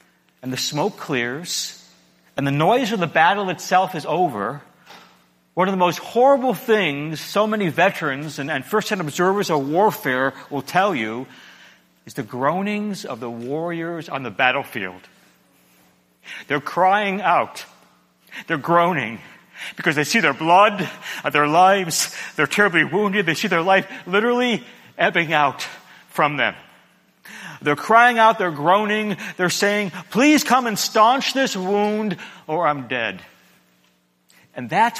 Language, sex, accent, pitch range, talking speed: English, male, American, 135-210 Hz, 140 wpm